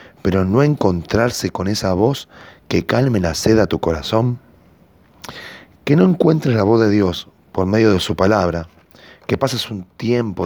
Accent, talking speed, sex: Argentinian, 165 wpm, male